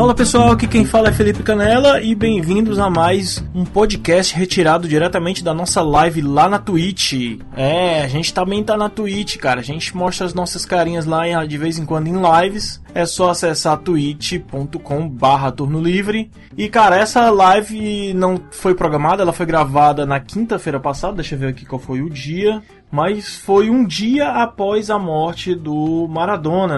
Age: 20-39